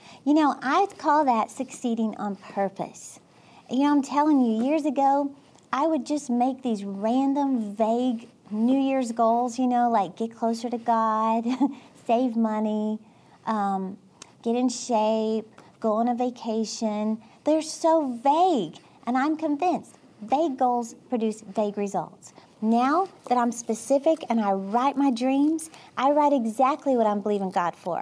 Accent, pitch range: American, 220-280 Hz